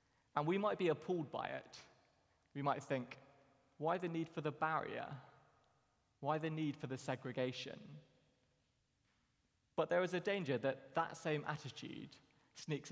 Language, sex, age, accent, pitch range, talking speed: English, male, 20-39, British, 130-155 Hz, 150 wpm